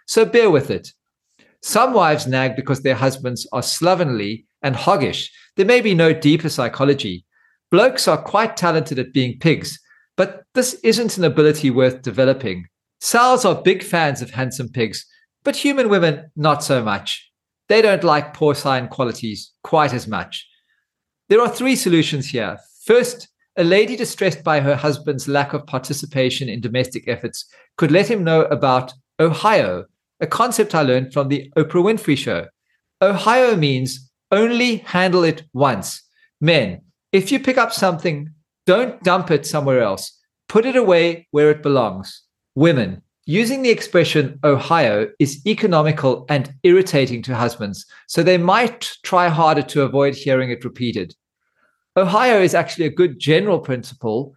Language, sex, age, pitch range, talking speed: English, male, 40-59, 130-190 Hz, 155 wpm